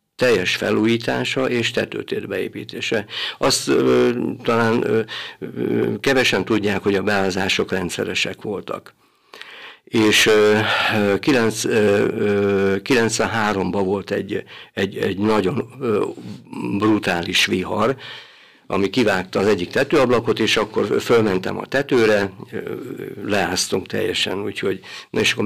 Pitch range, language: 95-115 Hz, Hungarian